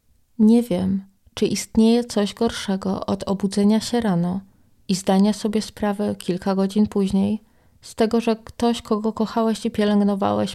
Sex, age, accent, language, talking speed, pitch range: female, 20-39, native, Polish, 140 wpm, 180-225 Hz